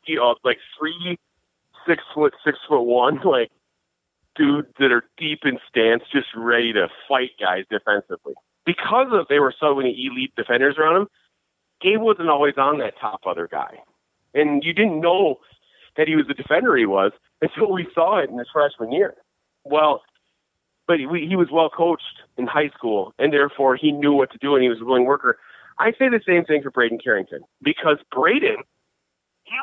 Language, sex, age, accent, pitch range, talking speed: English, male, 30-49, American, 135-215 Hz, 185 wpm